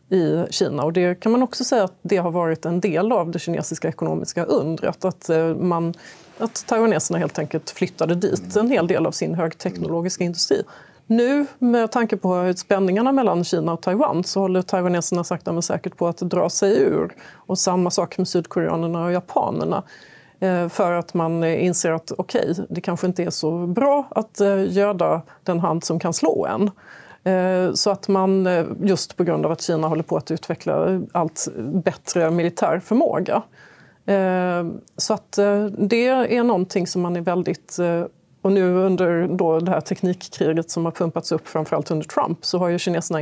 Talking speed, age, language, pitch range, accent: 175 wpm, 30-49, Swedish, 165-195 Hz, native